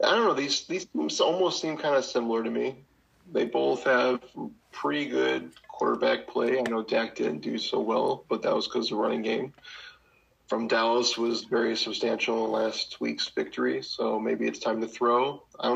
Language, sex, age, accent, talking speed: English, male, 20-39, American, 195 wpm